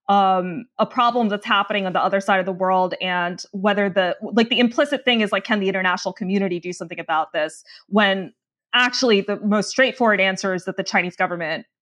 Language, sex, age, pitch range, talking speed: English, female, 20-39, 190-250 Hz, 205 wpm